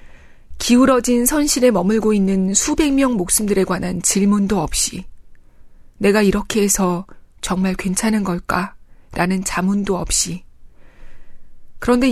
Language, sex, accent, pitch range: Korean, female, native, 185-230 Hz